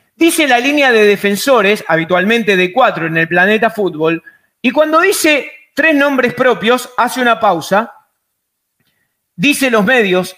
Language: Spanish